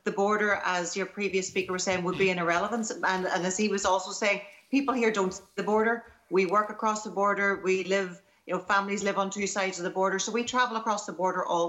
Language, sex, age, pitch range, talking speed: English, female, 40-59, 190-225 Hz, 250 wpm